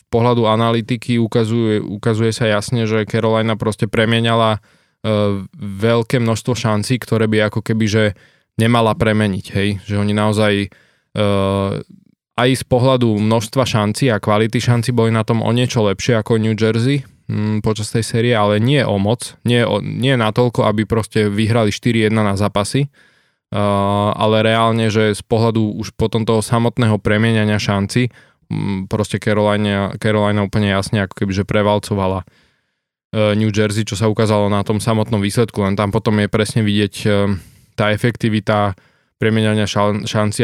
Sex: male